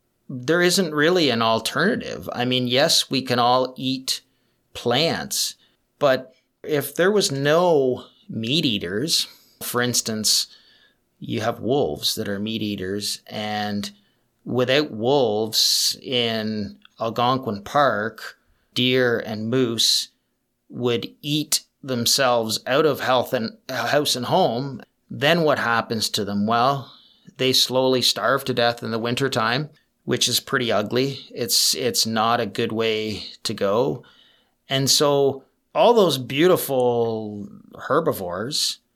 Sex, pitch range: male, 115-135 Hz